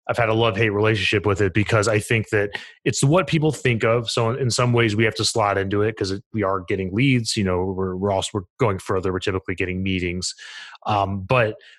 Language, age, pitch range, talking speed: English, 30-49, 100-115 Hz, 230 wpm